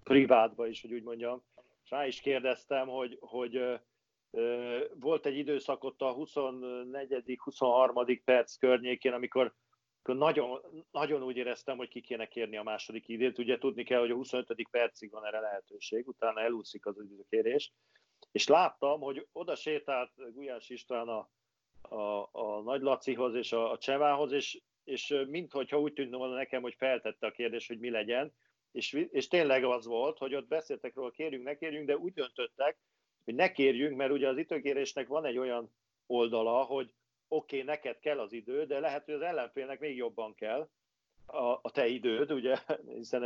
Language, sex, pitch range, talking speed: Hungarian, male, 120-145 Hz, 170 wpm